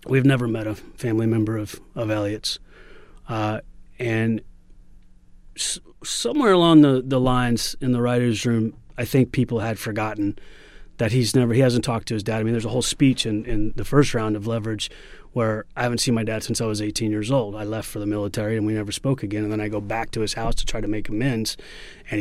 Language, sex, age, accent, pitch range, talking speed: English, male, 30-49, American, 105-120 Hz, 225 wpm